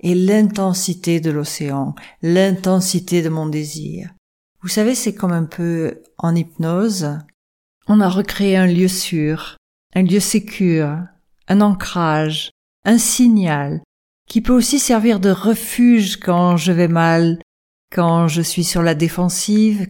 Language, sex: French, female